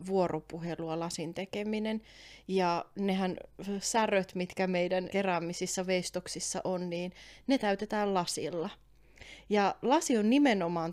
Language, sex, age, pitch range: Finnish, female, 20-39, 170-195 Hz